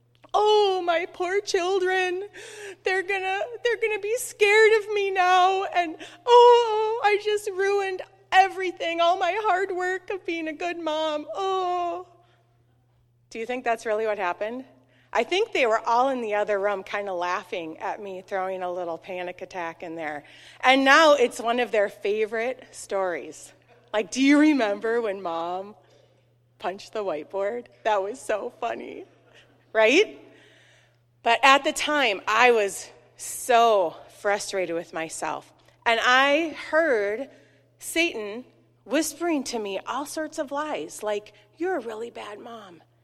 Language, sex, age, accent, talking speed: English, female, 30-49, American, 150 wpm